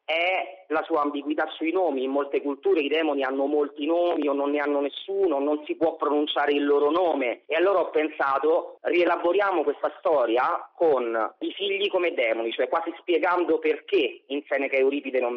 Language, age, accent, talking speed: Italian, 30-49, native, 185 wpm